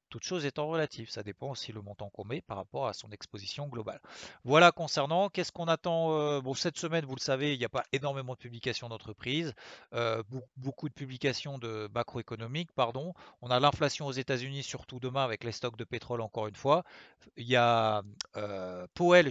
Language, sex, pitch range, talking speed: French, male, 115-140 Hz, 190 wpm